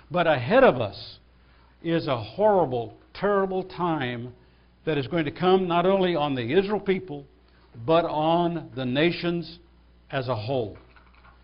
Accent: American